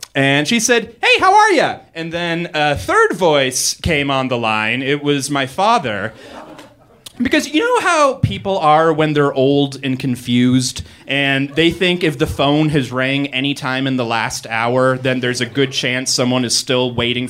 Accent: American